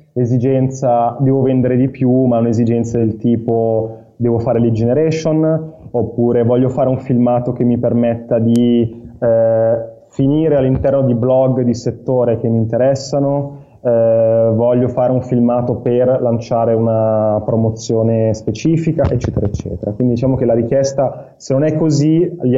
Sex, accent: male, native